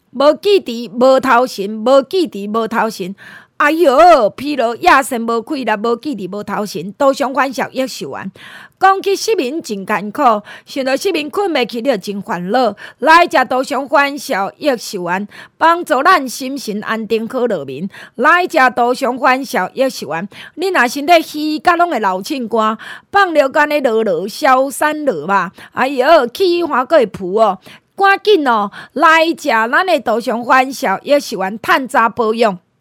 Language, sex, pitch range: Chinese, female, 220-300 Hz